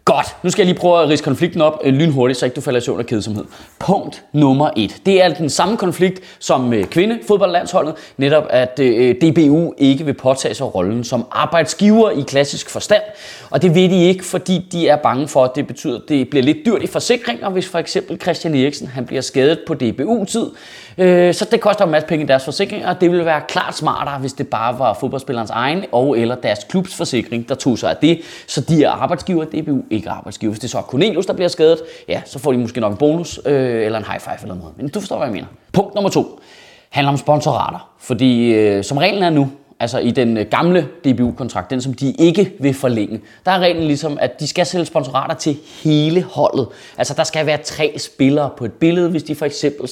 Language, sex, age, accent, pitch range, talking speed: Danish, male, 30-49, native, 130-175 Hz, 225 wpm